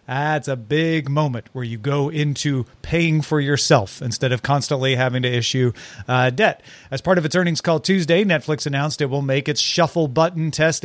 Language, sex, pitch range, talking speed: English, male, 135-170 Hz, 195 wpm